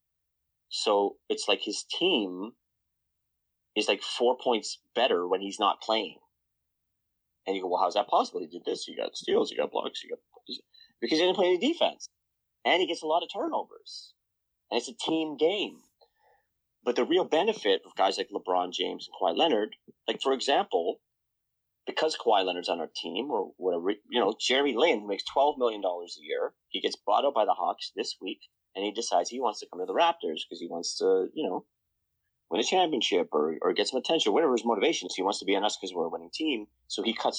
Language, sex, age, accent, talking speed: English, male, 30-49, American, 220 wpm